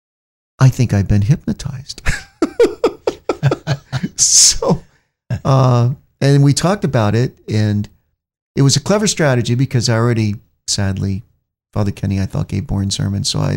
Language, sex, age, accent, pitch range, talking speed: English, male, 50-69, American, 100-135 Hz, 135 wpm